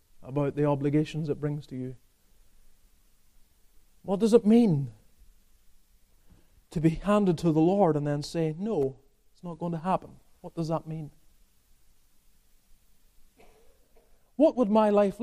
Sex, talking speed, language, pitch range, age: male, 135 wpm, English, 140-235 Hz, 30-49